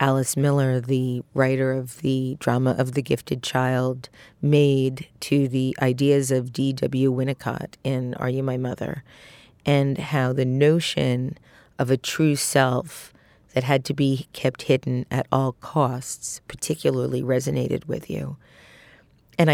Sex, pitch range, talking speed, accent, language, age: female, 130-145 Hz, 140 wpm, American, English, 40-59